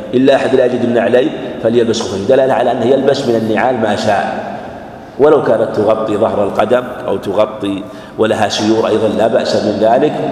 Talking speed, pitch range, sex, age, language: 175 wpm, 105-125 Hz, male, 50-69, Arabic